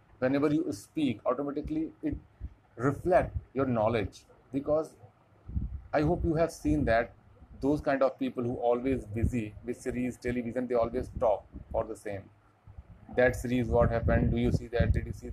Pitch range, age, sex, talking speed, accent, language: 105-125 Hz, 30-49, male, 165 wpm, native, Hindi